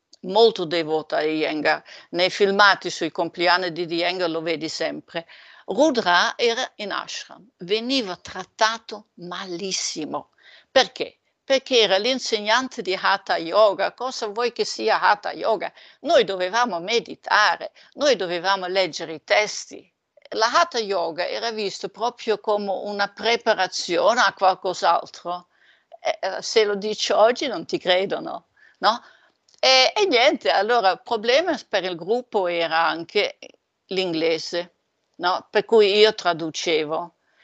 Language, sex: Italian, female